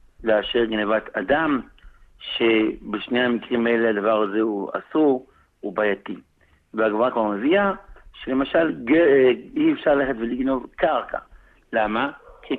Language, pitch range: Hebrew, 115-165 Hz